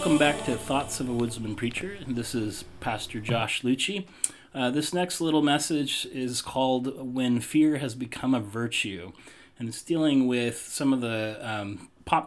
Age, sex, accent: 30-49, male, American